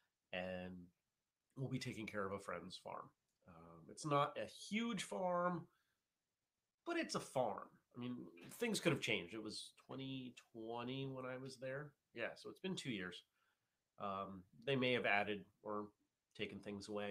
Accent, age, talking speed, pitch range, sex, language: American, 30-49, 165 wpm, 105-135 Hz, male, English